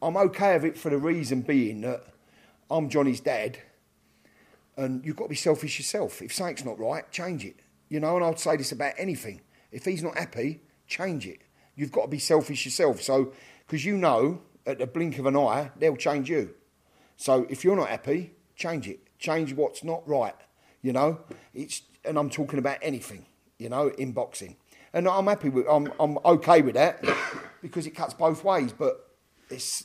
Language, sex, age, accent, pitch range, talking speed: English, male, 40-59, British, 120-155 Hz, 195 wpm